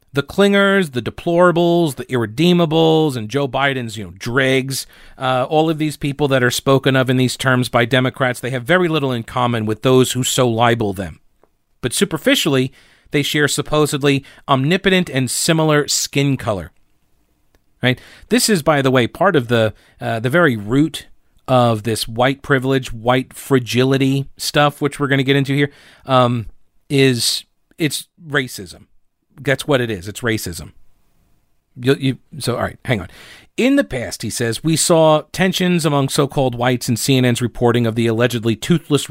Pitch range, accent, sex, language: 120-145 Hz, American, male, English